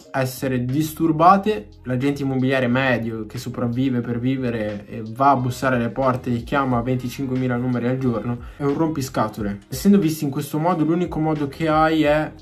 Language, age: Italian, 20-39